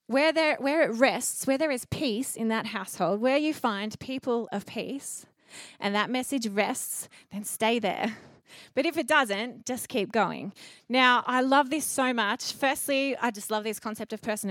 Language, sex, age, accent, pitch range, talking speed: English, female, 20-39, Australian, 205-260 Hz, 190 wpm